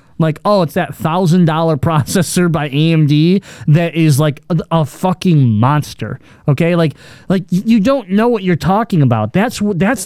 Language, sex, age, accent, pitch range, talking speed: English, male, 20-39, American, 145-205 Hz, 160 wpm